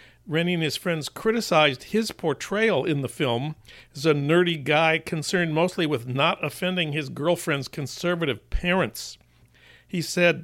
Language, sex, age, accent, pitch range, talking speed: English, male, 60-79, American, 135-180 Hz, 145 wpm